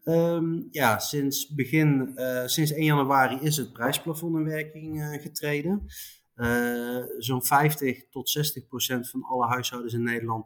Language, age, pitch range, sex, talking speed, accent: Dutch, 30-49, 120-140 Hz, male, 150 wpm, Dutch